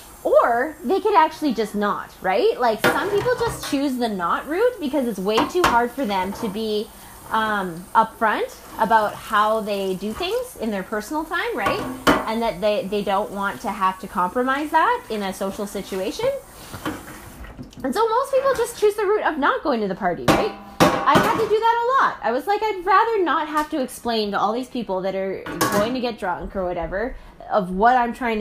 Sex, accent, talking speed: female, American, 205 wpm